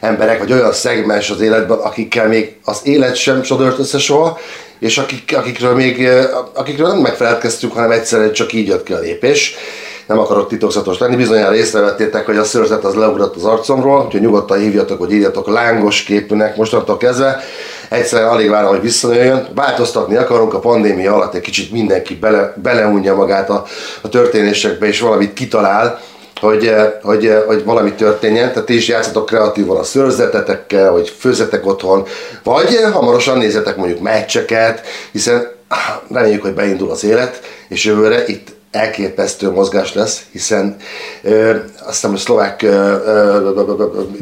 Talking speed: 150 wpm